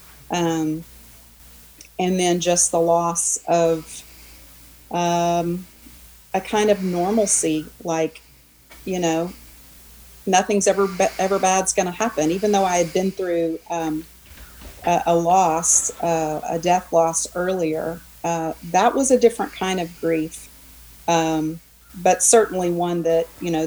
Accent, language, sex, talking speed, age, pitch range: American, English, female, 130 wpm, 40-59, 155-180 Hz